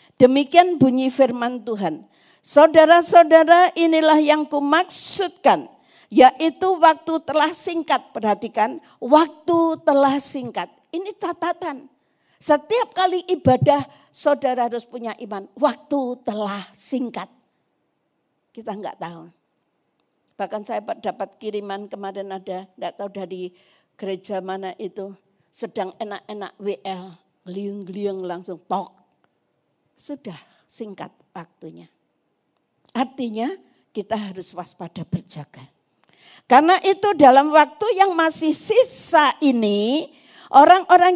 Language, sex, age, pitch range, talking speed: Indonesian, female, 50-69, 205-315 Hz, 95 wpm